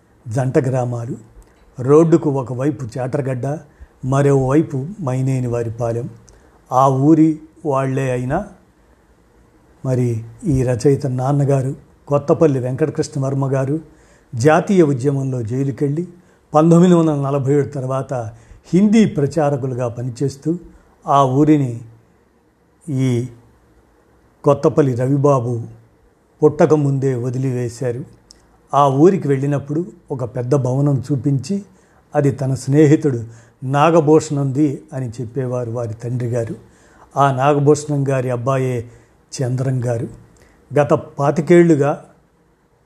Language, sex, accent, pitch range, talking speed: Telugu, male, native, 130-150 Hz, 85 wpm